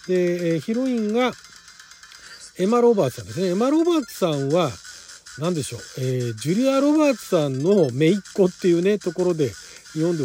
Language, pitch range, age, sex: Japanese, 140-190 Hz, 40-59, male